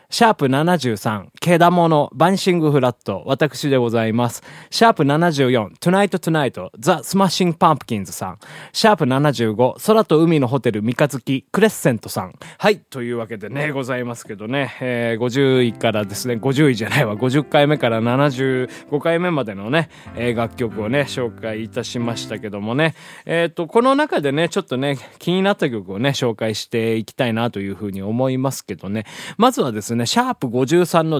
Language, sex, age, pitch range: Japanese, male, 20-39, 115-165 Hz